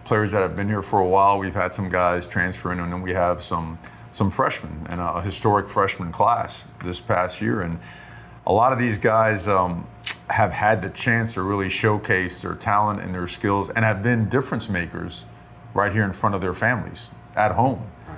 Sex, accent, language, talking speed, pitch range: male, American, English, 200 wpm, 90-110 Hz